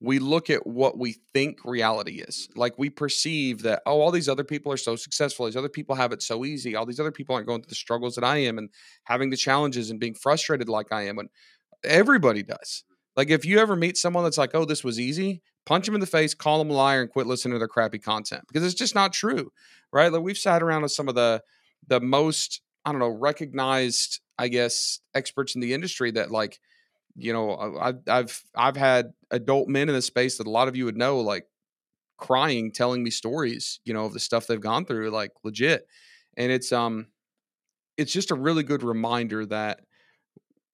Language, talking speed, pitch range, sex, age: English, 220 wpm, 115-145 Hz, male, 40-59